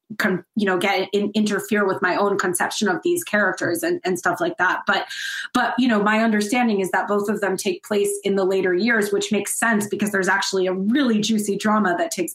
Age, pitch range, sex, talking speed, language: 30-49, 195-250 Hz, female, 230 wpm, English